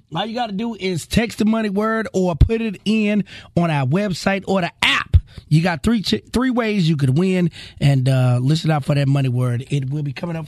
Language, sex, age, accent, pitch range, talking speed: English, male, 30-49, American, 140-205 Hz, 240 wpm